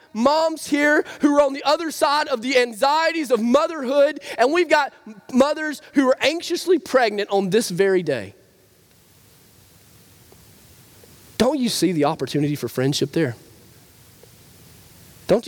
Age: 20-39